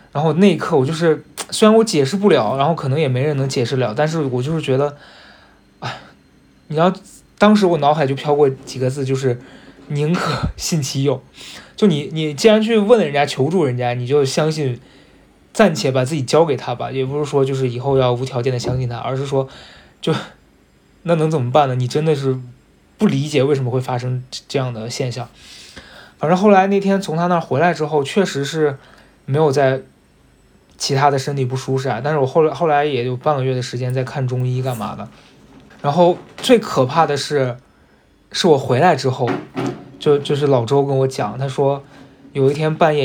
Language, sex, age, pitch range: Chinese, male, 20-39, 130-155 Hz